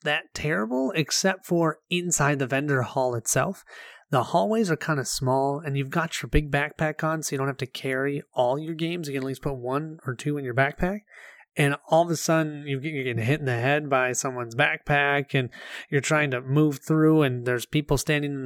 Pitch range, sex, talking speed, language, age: 135-165 Hz, male, 220 wpm, English, 30-49